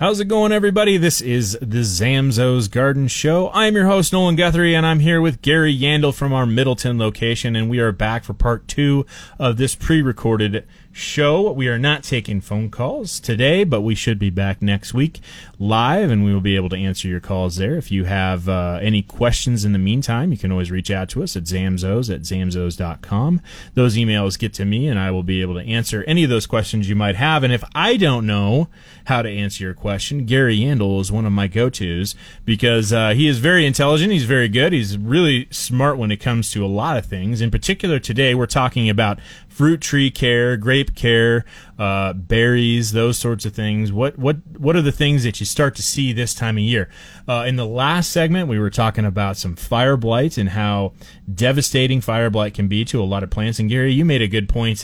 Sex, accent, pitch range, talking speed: male, American, 100-135 Hz, 220 wpm